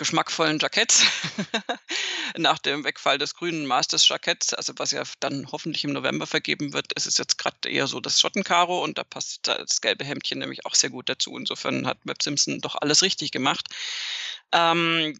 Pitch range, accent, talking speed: 155-195 Hz, German, 180 wpm